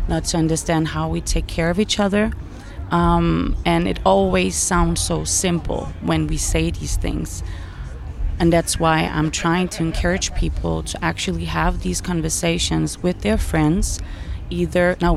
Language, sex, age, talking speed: English, female, 30-49, 160 wpm